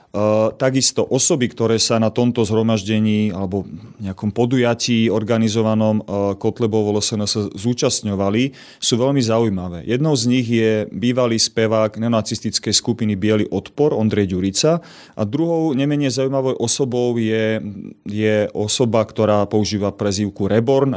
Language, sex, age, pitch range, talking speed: Slovak, male, 30-49, 105-120 Hz, 125 wpm